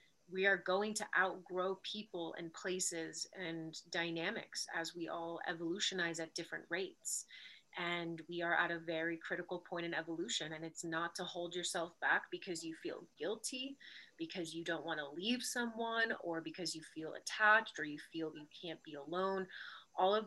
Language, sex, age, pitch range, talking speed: English, female, 30-49, 165-195 Hz, 175 wpm